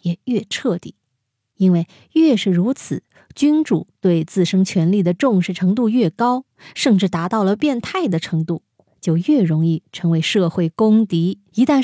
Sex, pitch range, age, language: female, 170-225 Hz, 20-39, Chinese